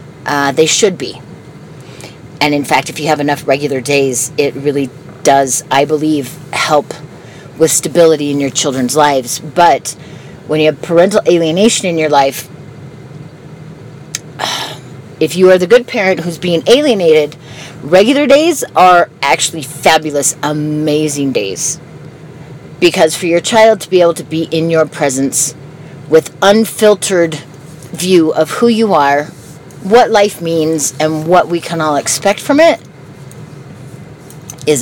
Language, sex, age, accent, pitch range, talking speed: English, female, 40-59, American, 145-170 Hz, 140 wpm